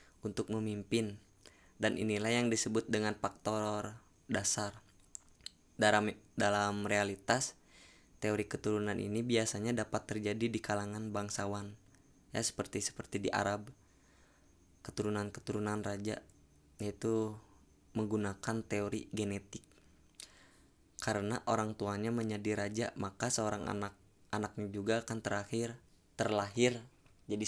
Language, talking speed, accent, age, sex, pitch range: Indonesian, 100 wpm, native, 20-39, female, 100-110 Hz